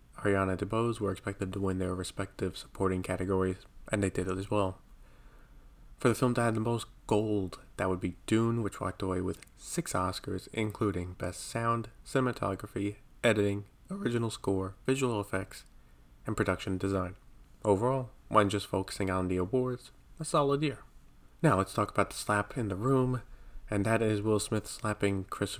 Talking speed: 170 wpm